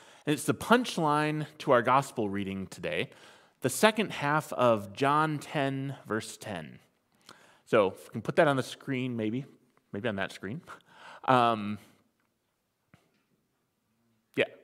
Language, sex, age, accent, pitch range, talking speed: English, male, 30-49, American, 130-180 Hz, 130 wpm